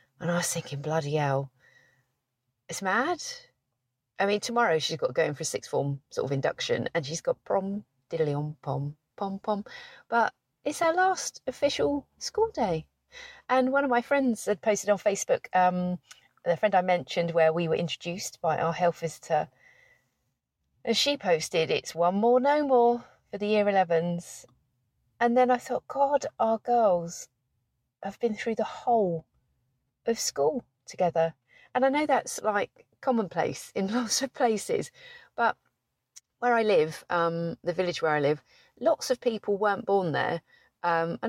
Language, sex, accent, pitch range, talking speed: English, female, British, 160-245 Hz, 165 wpm